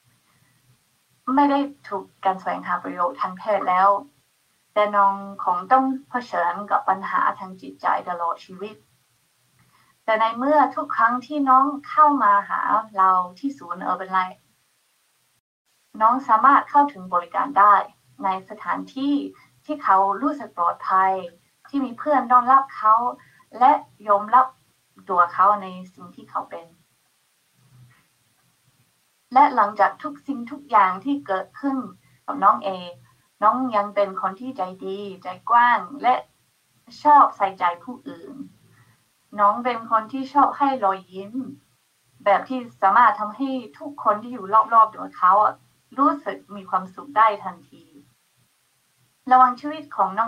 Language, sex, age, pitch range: Thai, female, 20-39, 190-265 Hz